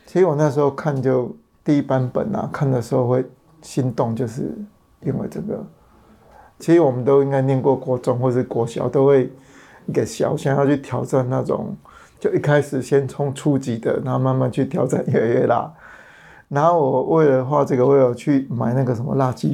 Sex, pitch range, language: male, 130-145 Hz, Chinese